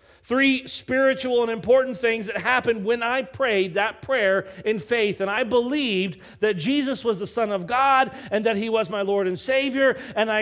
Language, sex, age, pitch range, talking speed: English, male, 40-59, 175-235 Hz, 195 wpm